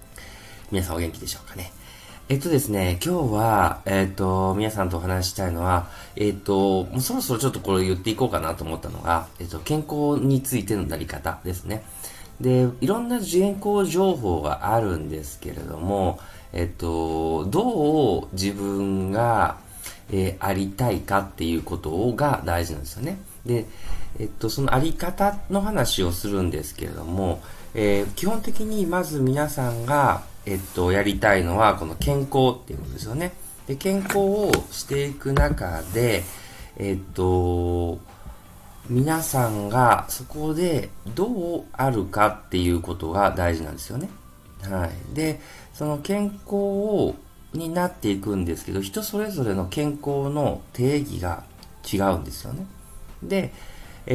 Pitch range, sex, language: 90-140 Hz, male, Japanese